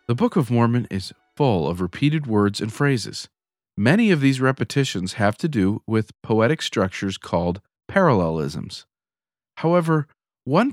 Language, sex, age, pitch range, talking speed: English, male, 40-59, 110-155 Hz, 140 wpm